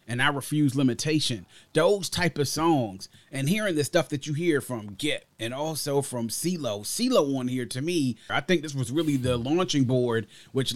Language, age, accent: English, 30-49, American